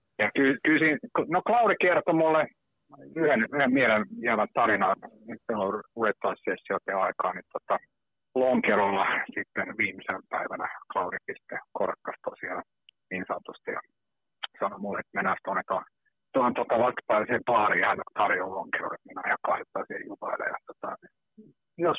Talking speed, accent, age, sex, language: 120 wpm, native, 50-69, male, Finnish